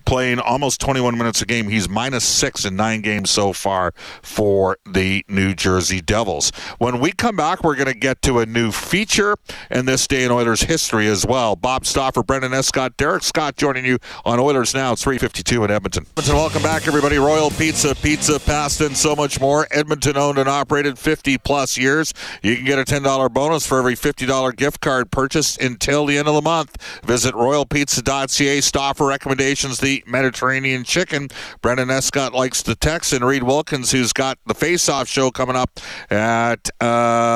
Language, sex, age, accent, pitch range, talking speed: English, male, 50-69, American, 120-145 Hz, 180 wpm